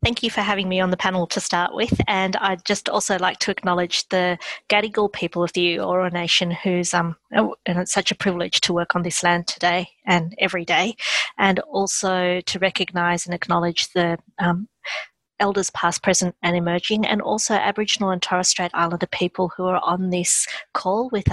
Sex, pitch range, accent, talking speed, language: female, 175-200 Hz, Australian, 185 wpm, English